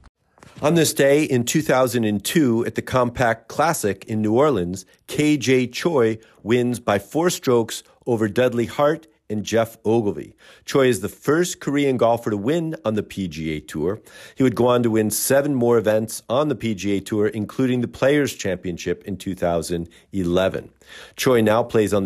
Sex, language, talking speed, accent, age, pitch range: male, English, 160 wpm, American, 50-69, 100-135 Hz